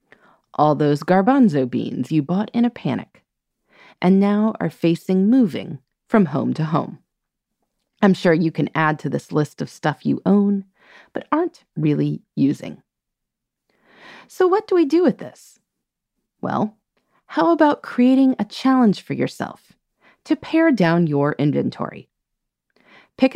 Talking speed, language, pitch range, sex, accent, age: 140 wpm, English, 155-260 Hz, female, American, 30-49